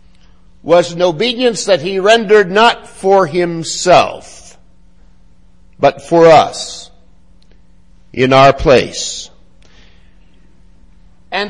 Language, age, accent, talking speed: English, 60-79, American, 85 wpm